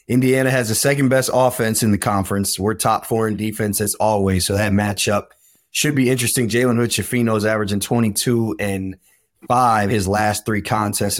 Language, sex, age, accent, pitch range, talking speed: English, male, 20-39, American, 100-115 Hz, 175 wpm